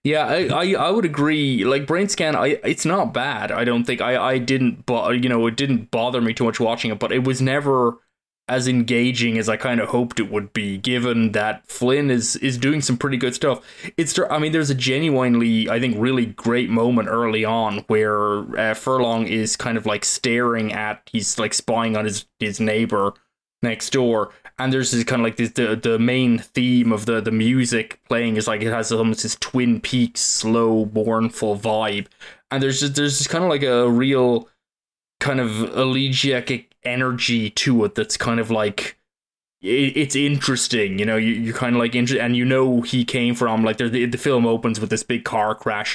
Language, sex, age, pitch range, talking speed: English, male, 20-39, 110-130 Hz, 200 wpm